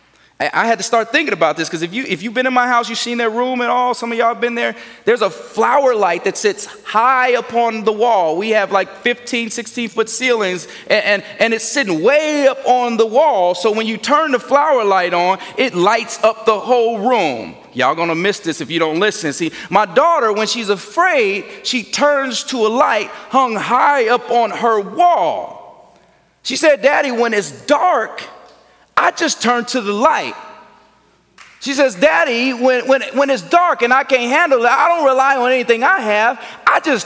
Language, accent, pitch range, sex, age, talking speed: English, American, 210-270 Hz, male, 30-49, 205 wpm